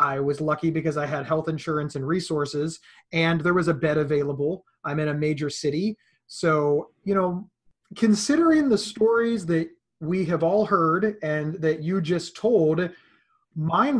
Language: English